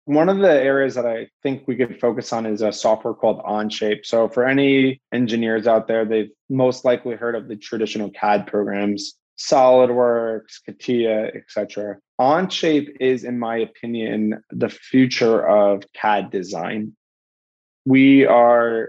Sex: male